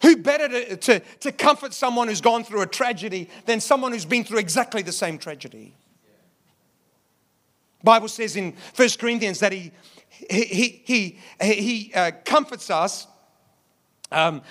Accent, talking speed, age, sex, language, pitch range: British, 130 wpm, 40-59, male, English, 165-240 Hz